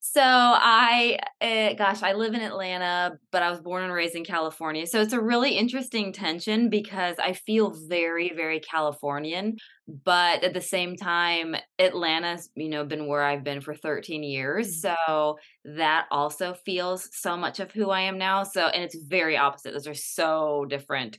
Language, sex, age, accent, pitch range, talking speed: English, female, 20-39, American, 150-195 Hz, 180 wpm